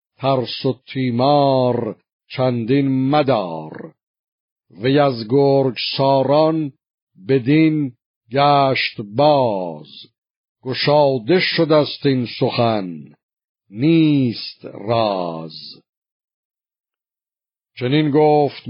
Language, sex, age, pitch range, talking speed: Persian, male, 50-69, 120-145 Hz, 65 wpm